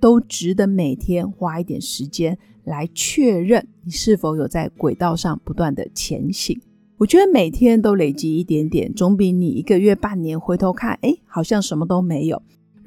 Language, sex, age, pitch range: Chinese, female, 30-49, 175-215 Hz